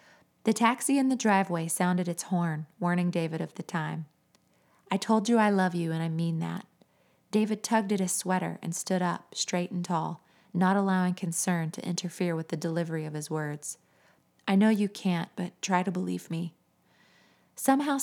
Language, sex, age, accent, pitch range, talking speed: English, female, 30-49, American, 170-200 Hz, 185 wpm